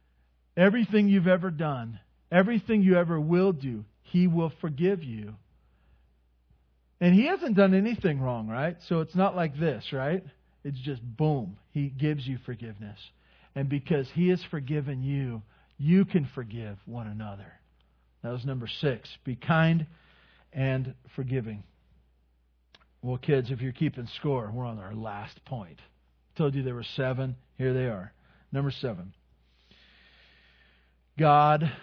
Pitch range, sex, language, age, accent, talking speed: 110-155 Hz, male, English, 50-69, American, 140 wpm